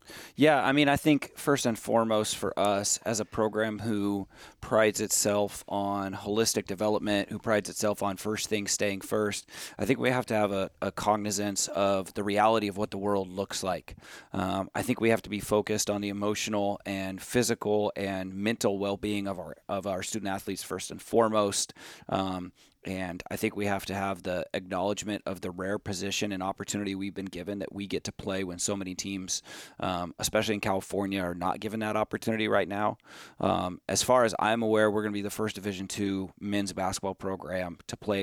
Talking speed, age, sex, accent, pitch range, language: 200 wpm, 30-49, male, American, 95-110 Hz, English